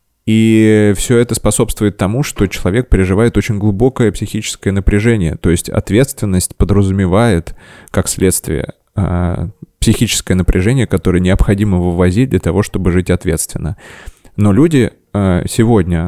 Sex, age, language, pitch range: male, 20-39, Russian, 90-110 Hz